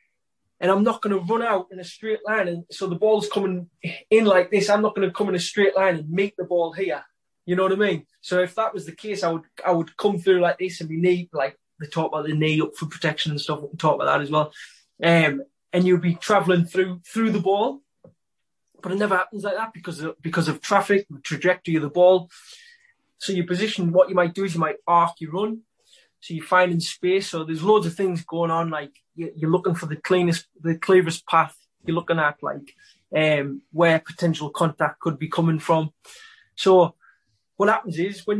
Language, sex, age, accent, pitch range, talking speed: English, male, 20-39, British, 165-200 Hz, 230 wpm